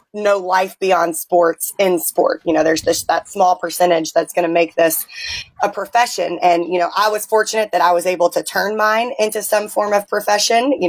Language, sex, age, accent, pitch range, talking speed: English, female, 20-39, American, 175-200 Hz, 215 wpm